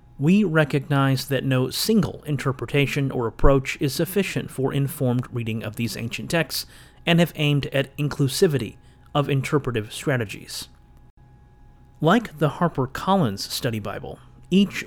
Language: English